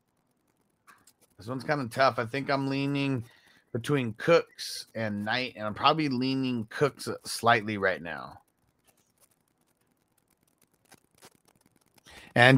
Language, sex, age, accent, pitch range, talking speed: English, male, 30-49, American, 120-155 Hz, 105 wpm